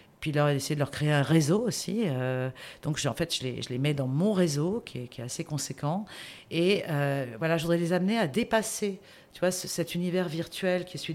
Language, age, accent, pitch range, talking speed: French, 50-69, French, 140-180 Hz, 250 wpm